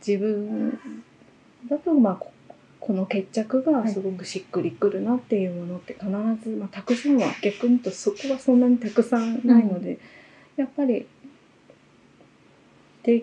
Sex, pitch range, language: female, 195-245 Hz, Japanese